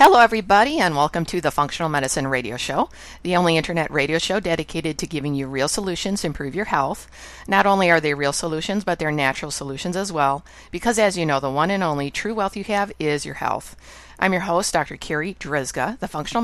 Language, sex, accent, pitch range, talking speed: English, female, American, 140-180 Hz, 220 wpm